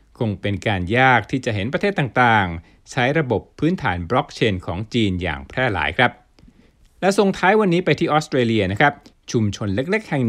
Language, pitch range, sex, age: Thai, 100-140 Hz, male, 60-79